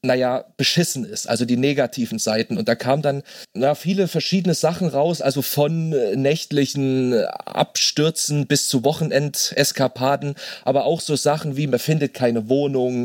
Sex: male